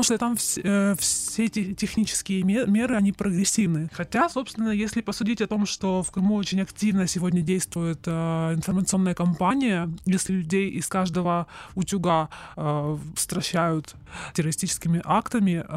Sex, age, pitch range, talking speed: male, 20-39, 170-205 Hz, 135 wpm